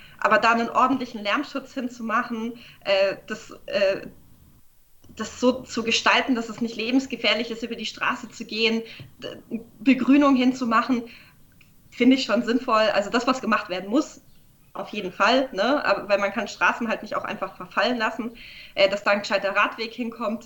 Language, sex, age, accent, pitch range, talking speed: German, female, 20-39, German, 205-260 Hz, 155 wpm